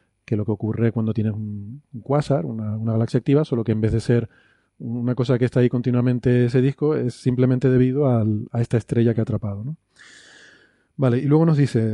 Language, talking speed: Spanish, 200 wpm